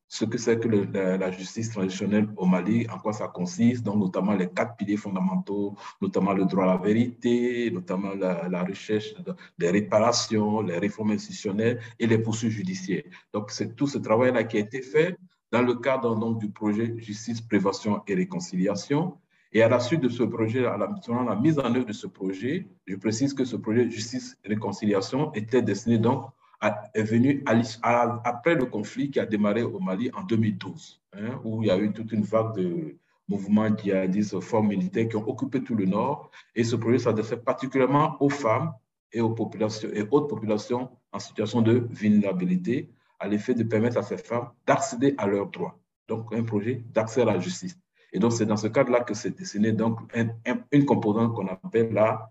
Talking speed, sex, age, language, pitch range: 195 wpm, male, 50-69, French, 105-120 Hz